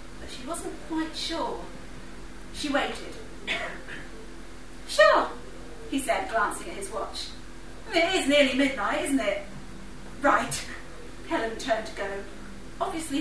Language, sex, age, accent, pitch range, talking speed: English, female, 30-49, British, 225-300 Hz, 110 wpm